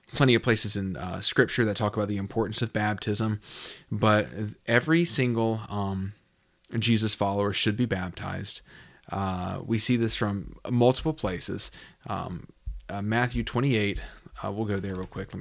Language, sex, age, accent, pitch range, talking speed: English, male, 30-49, American, 105-125 Hz, 155 wpm